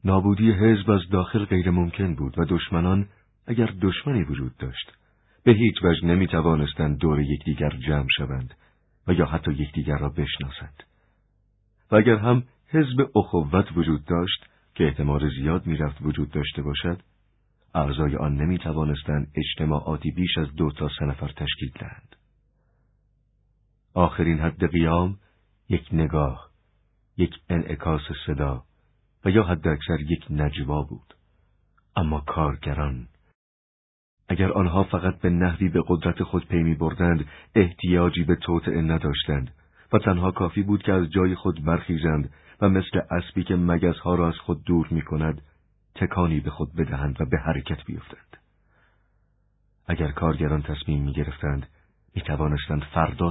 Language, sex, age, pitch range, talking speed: Persian, male, 50-69, 75-95 Hz, 135 wpm